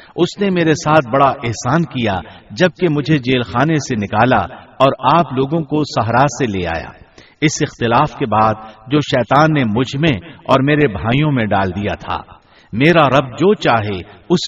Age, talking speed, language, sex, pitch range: 50-69, 175 wpm, Urdu, male, 105-155 Hz